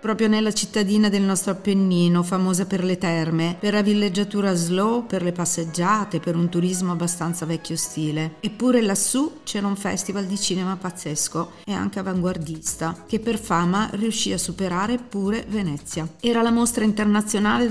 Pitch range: 170-215 Hz